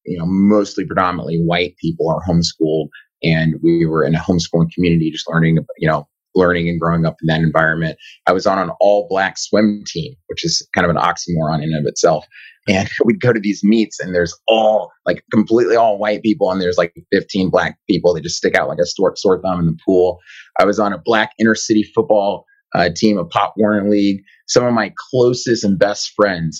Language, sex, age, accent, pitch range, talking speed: English, male, 30-49, American, 85-105 Hz, 215 wpm